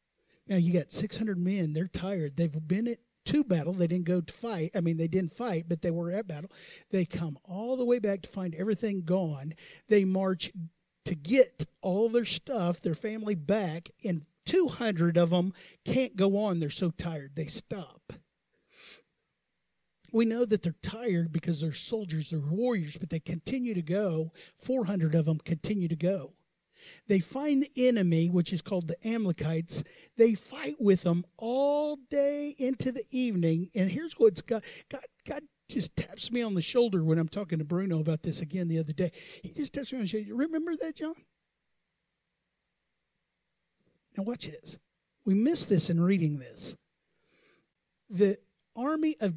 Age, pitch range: 50-69, 170-230 Hz